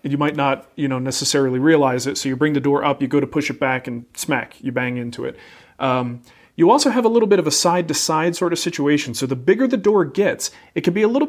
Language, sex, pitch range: English, male, 135-180 Hz